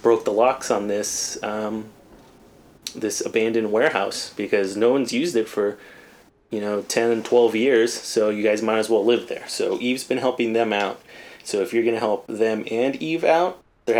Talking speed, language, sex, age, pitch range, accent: 190 wpm, English, male, 20-39, 105-120 Hz, American